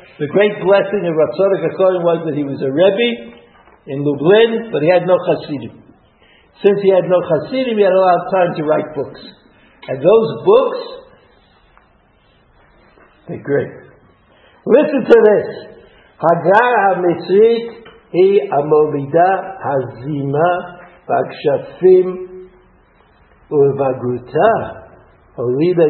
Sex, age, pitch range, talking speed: male, 60-79, 135-185 Hz, 115 wpm